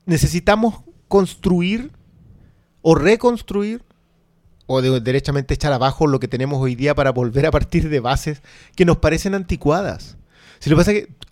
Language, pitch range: Spanish, 155-215 Hz